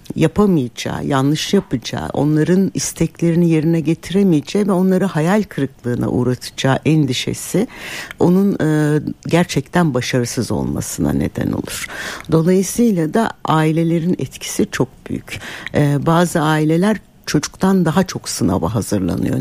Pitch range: 130-170 Hz